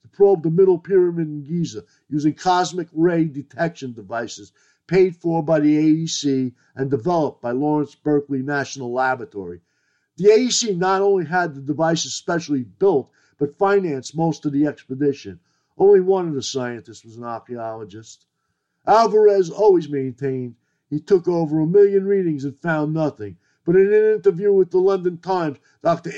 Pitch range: 130-180 Hz